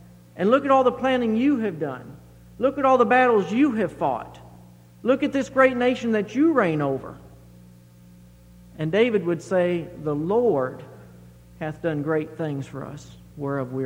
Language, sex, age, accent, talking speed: English, male, 50-69, American, 175 wpm